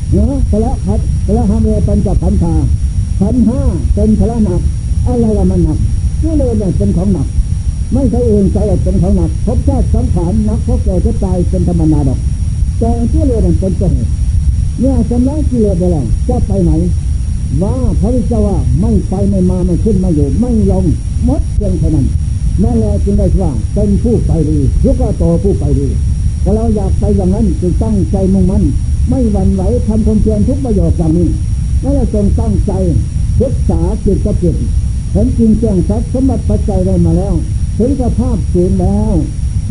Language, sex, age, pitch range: Thai, male, 60-79, 80-100 Hz